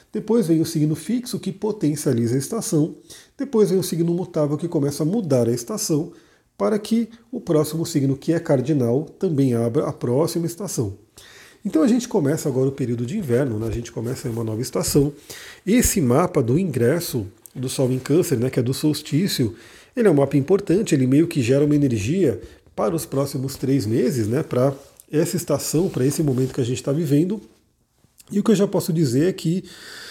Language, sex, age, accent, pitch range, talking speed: Portuguese, male, 40-59, Brazilian, 130-175 Hz, 195 wpm